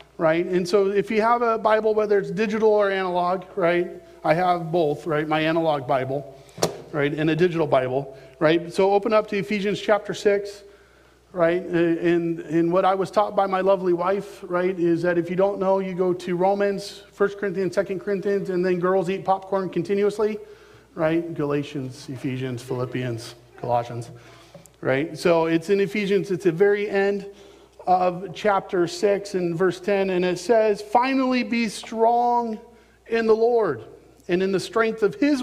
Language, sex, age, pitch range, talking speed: English, male, 40-59, 170-220 Hz, 170 wpm